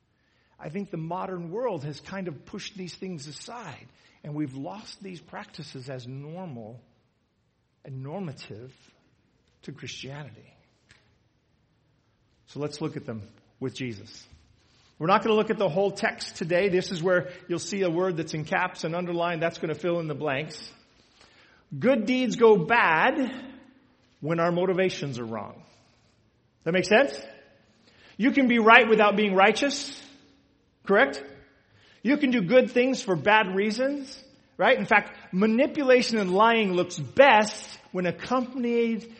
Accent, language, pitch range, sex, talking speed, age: American, English, 150-245 Hz, male, 150 wpm, 50-69